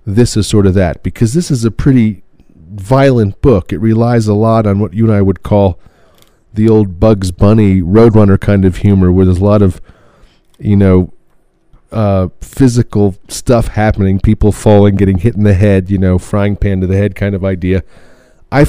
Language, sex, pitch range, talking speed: English, male, 95-115 Hz, 195 wpm